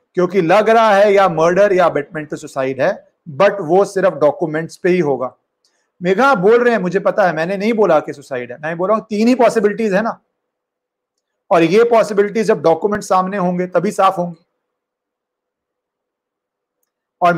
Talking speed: 175 wpm